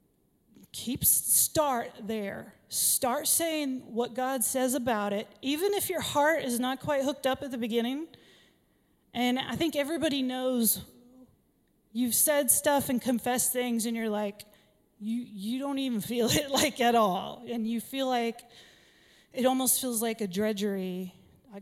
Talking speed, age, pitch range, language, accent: 155 wpm, 30-49, 215-275 Hz, English, American